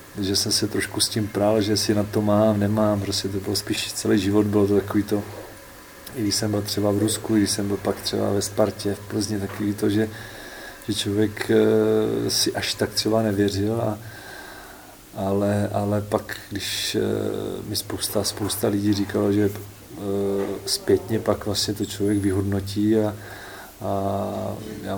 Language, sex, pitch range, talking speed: Czech, male, 100-105 Hz, 165 wpm